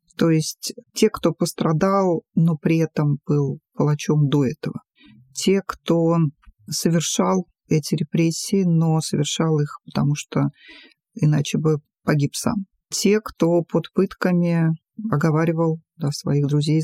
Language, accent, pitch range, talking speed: Russian, native, 155-200 Hz, 120 wpm